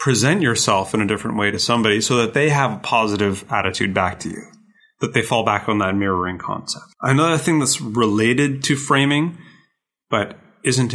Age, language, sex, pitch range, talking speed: 30-49, English, male, 105-135 Hz, 185 wpm